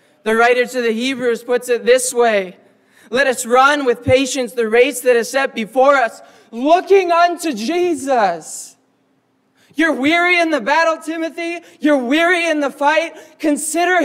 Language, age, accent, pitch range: English, 20-39, American, 220-295 Hz